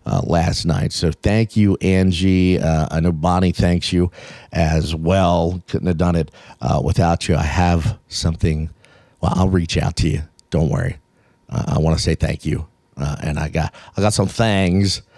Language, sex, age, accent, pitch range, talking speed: English, male, 50-69, American, 85-100 Hz, 190 wpm